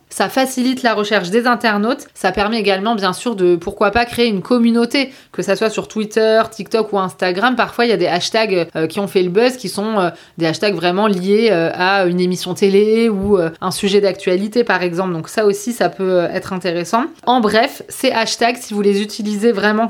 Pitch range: 195-230 Hz